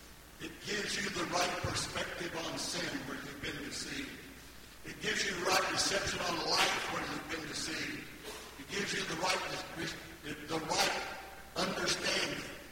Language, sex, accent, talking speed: English, male, American, 150 wpm